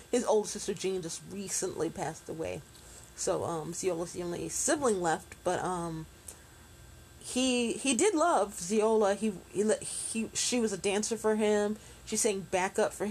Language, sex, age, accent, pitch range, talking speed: English, female, 30-49, American, 170-210 Hz, 165 wpm